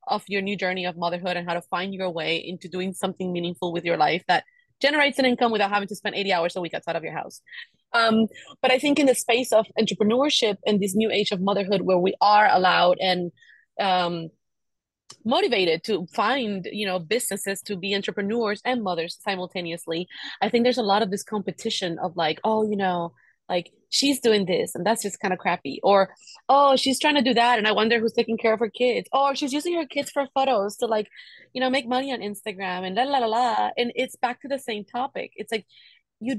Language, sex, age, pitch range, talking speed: English, female, 30-49, 185-250 Hz, 225 wpm